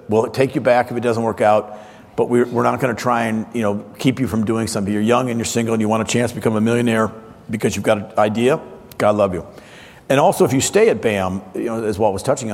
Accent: American